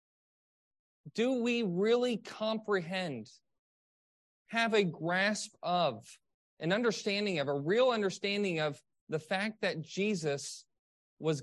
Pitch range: 160-200 Hz